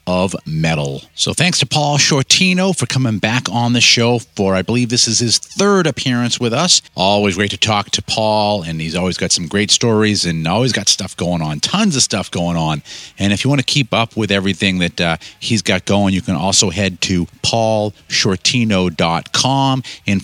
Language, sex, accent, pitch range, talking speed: English, male, American, 100-125 Hz, 200 wpm